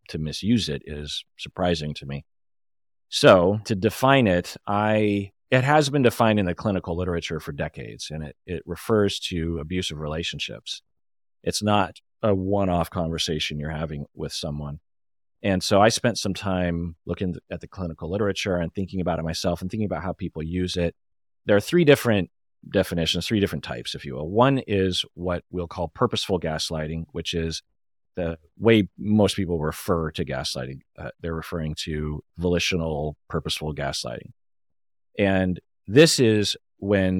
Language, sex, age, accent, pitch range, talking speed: English, male, 30-49, American, 80-100 Hz, 160 wpm